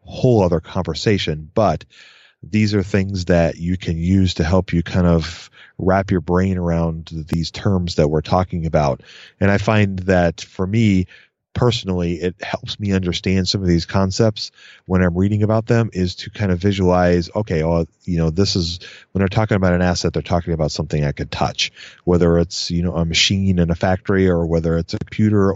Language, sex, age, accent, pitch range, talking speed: English, male, 30-49, American, 85-105 Hz, 195 wpm